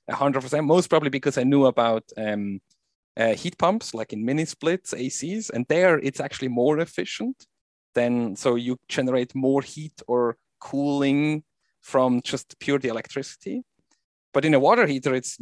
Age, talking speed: 30-49, 155 wpm